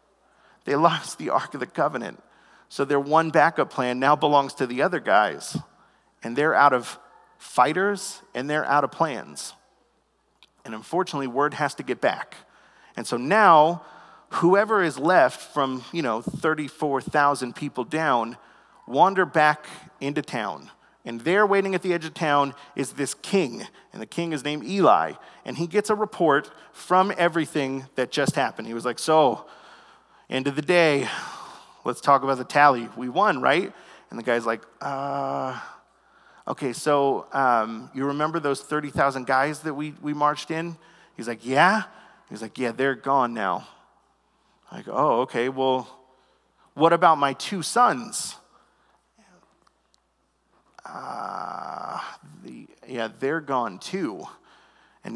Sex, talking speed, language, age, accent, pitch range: male, 150 wpm, English, 40-59, American, 130-160 Hz